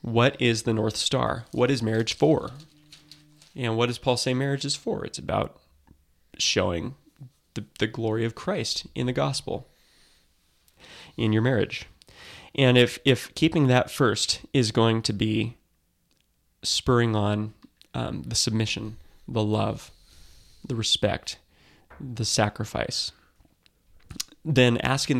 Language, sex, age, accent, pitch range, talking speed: English, male, 20-39, American, 105-125 Hz, 130 wpm